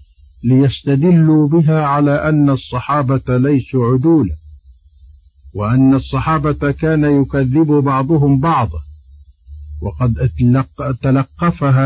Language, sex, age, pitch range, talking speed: Arabic, male, 50-69, 95-140 Hz, 75 wpm